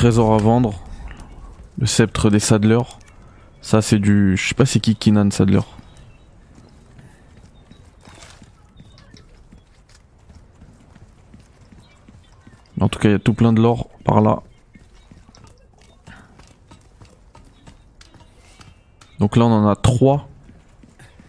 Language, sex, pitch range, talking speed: French, male, 95-110 Hz, 100 wpm